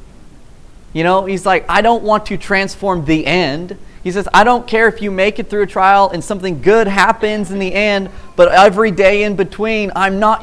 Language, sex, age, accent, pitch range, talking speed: English, male, 30-49, American, 150-215 Hz, 215 wpm